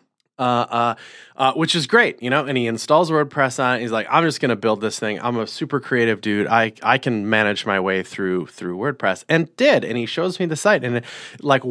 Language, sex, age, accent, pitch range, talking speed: English, male, 30-49, American, 105-135 Hz, 250 wpm